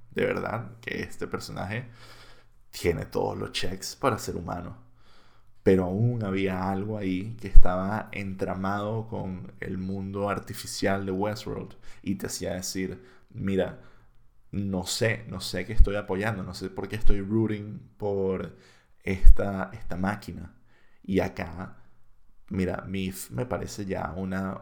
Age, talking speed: 20-39, 135 wpm